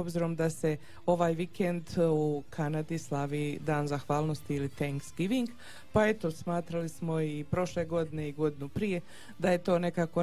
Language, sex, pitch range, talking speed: Croatian, female, 155-175 Hz, 155 wpm